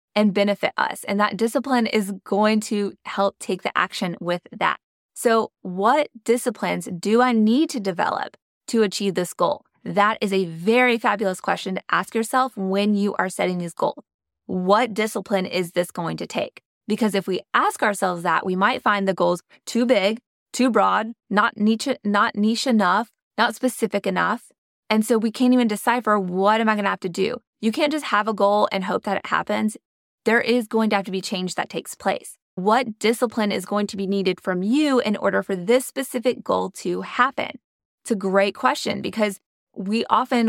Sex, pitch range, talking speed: female, 195-235 Hz, 195 wpm